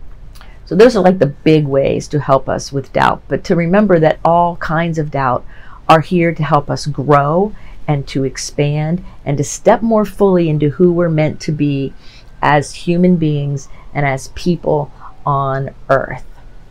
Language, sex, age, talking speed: English, female, 40-59, 170 wpm